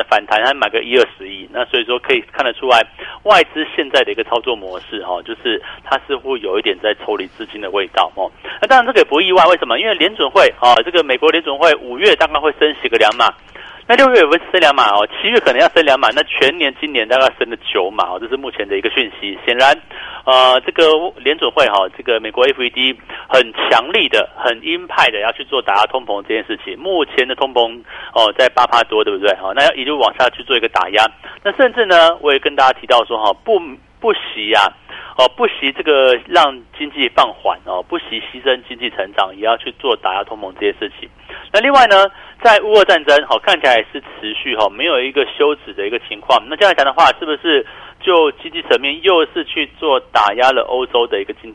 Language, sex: Chinese, male